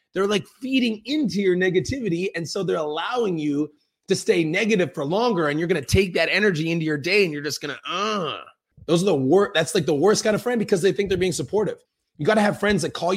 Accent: American